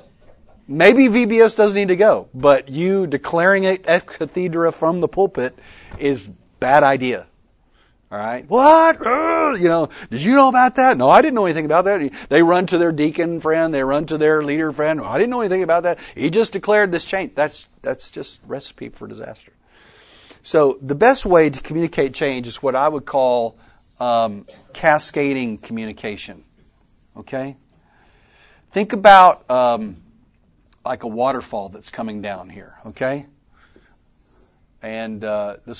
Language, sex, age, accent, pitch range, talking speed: English, male, 40-59, American, 120-170 Hz, 160 wpm